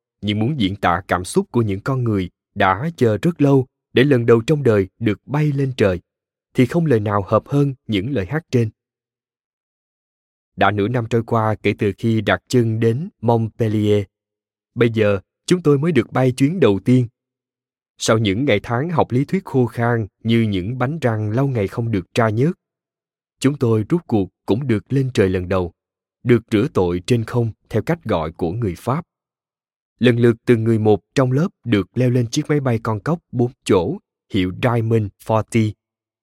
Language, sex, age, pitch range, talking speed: Vietnamese, male, 20-39, 105-130 Hz, 190 wpm